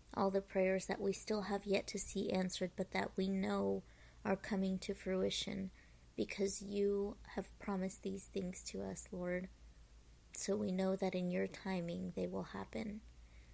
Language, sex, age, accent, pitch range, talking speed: English, female, 30-49, American, 180-205 Hz, 170 wpm